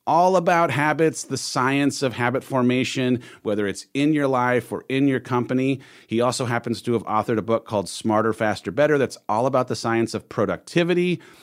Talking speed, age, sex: 190 wpm, 40-59, male